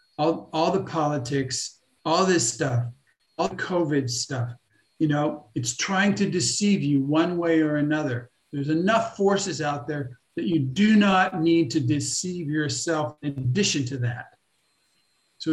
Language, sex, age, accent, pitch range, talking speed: English, male, 50-69, American, 140-180 Hz, 155 wpm